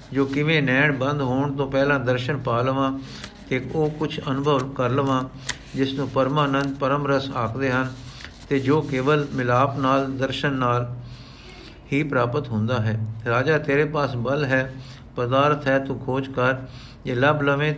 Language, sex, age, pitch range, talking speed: Punjabi, male, 50-69, 125-140 Hz, 160 wpm